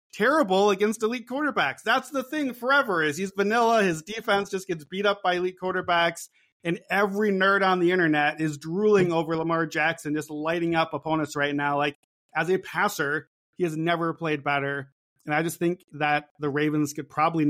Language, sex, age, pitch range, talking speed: English, male, 30-49, 150-185 Hz, 190 wpm